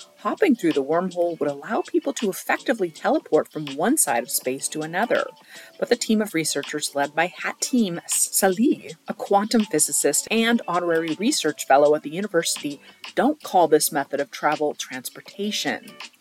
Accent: American